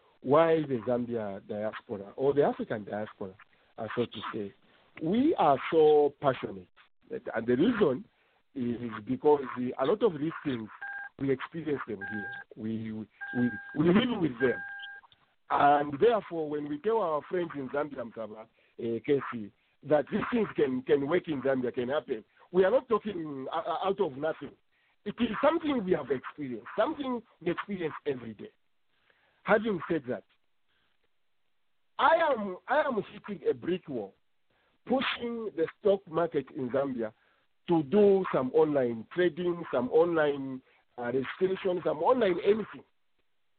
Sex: male